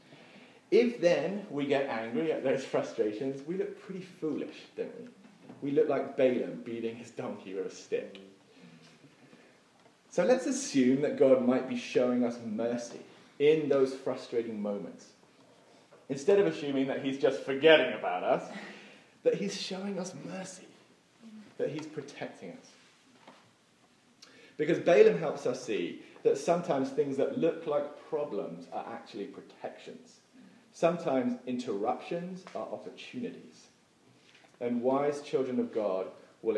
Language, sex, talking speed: English, male, 135 wpm